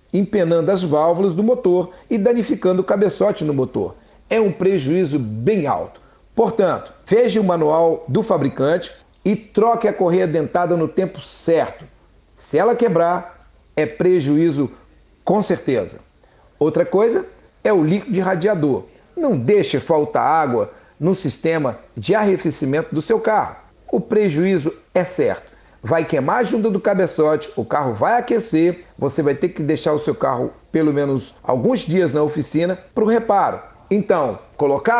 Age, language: 50-69, Portuguese